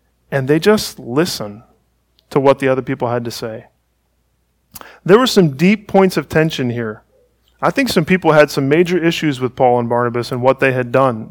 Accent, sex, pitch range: American, male, 110-150 Hz